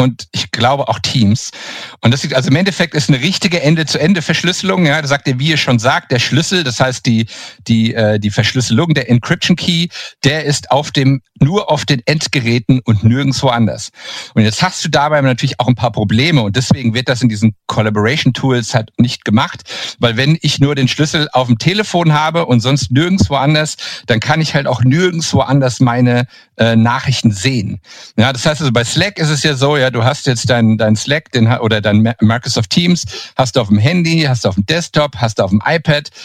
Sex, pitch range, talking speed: male, 115-155 Hz, 220 wpm